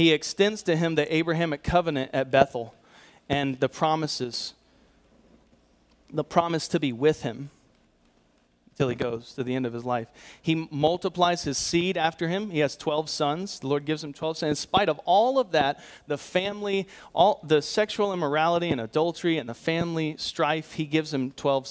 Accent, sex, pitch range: American, male, 135-170 Hz